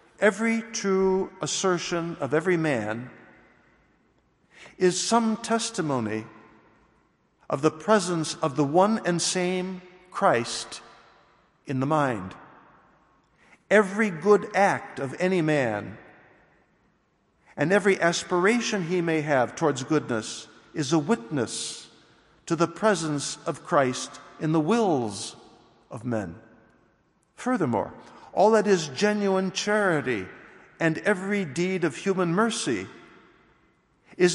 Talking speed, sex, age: 105 wpm, male, 60-79